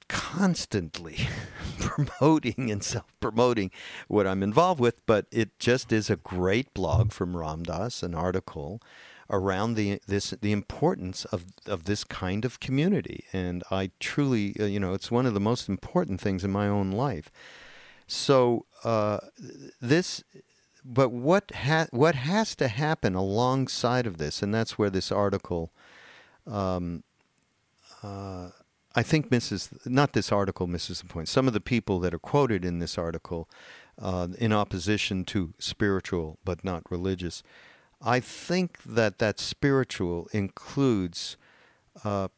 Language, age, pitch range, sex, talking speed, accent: English, 50-69, 95-125 Hz, male, 145 wpm, American